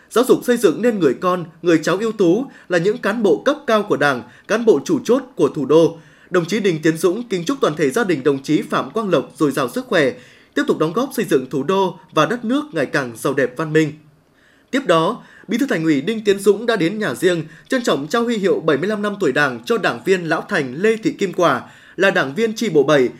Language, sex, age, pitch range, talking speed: Vietnamese, male, 20-39, 160-225 Hz, 260 wpm